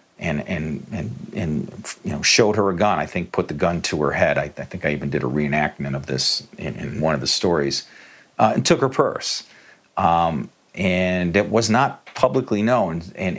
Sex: male